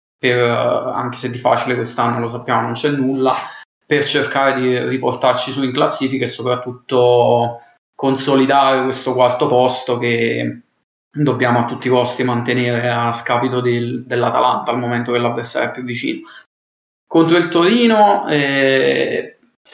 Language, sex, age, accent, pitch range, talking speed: Italian, male, 20-39, native, 120-135 Hz, 140 wpm